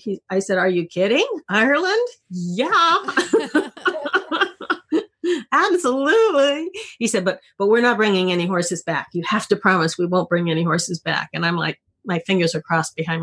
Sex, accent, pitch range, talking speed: female, American, 170-235 Hz, 170 wpm